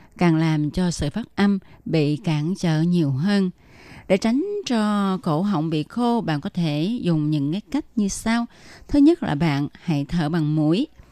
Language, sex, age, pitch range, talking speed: Vietnamese, female, 20-39, 160-215 Hz, 190 wpm